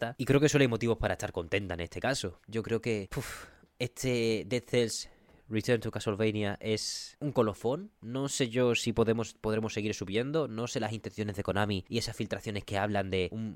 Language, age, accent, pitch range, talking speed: Spanish, 20-39, Spanish, 100-120 Hz, 195 wpm